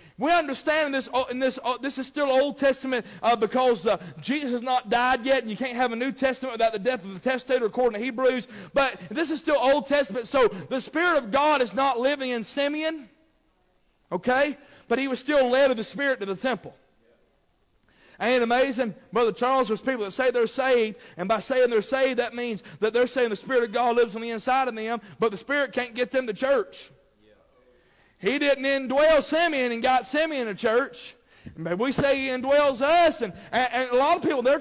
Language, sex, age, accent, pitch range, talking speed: English, male, 40-59, American, 230-275 Hz, 210 wpm